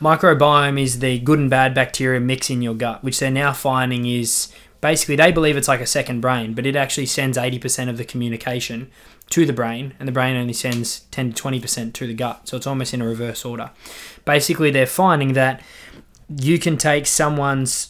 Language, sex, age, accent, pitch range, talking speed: English, male, 20-39, Australian, 125-140 Hz, 205 wpm